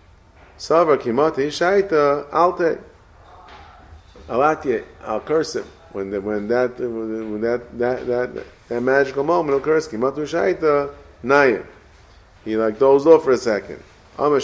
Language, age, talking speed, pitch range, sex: English, 30-49, 60 wpm, 90-135 Hz, male